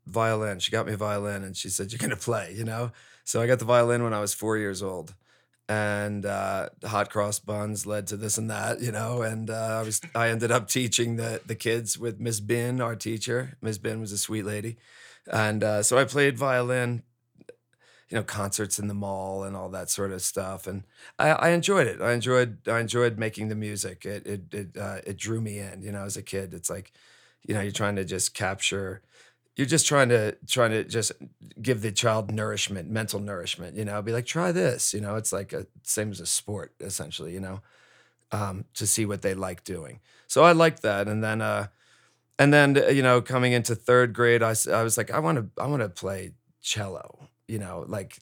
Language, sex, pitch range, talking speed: English, male, 100-120 Hz, 225 wpm